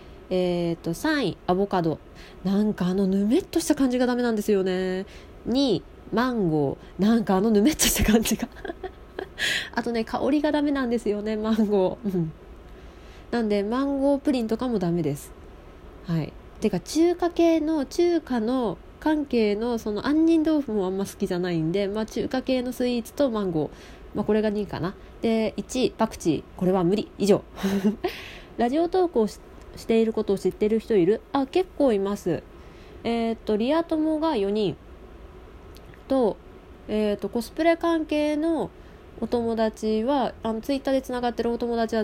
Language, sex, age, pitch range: Japanese, female, 20-39, 190-270 Hz